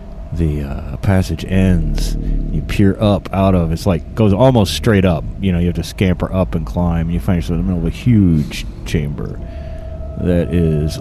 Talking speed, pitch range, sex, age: 195 wpm, 80-100 Hz, male, 30-49